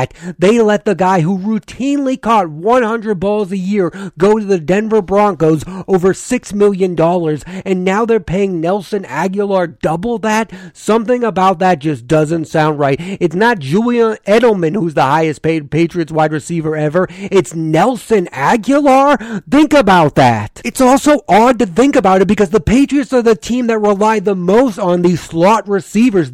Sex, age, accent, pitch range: male, 30-49, American, 170-220 Hz